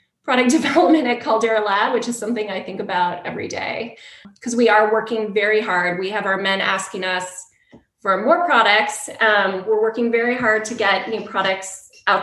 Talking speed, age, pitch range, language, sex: 185 wpm, 20-39, 195-235 Hz, English, female